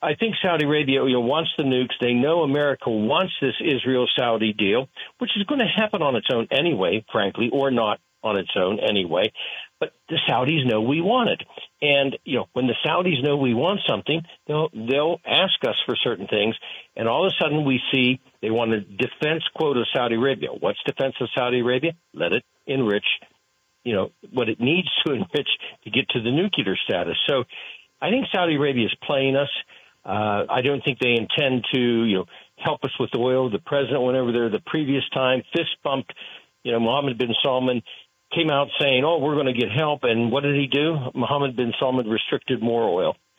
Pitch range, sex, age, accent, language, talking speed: 120-150 Hz, male, 60-79, American, English, 205 wpm